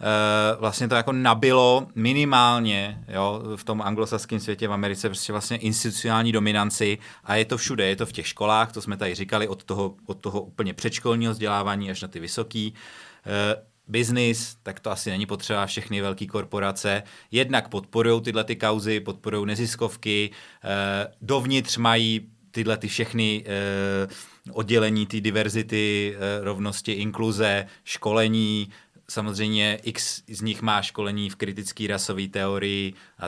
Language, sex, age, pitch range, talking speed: Czech, male, 30-49, 100-115 Hz, 150 wpm